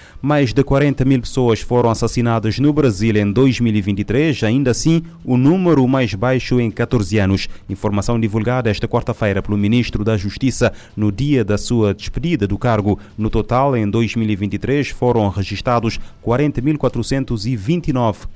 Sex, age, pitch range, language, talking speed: male, 30-49, 105-125 Hz, Portuguese, 135 wpm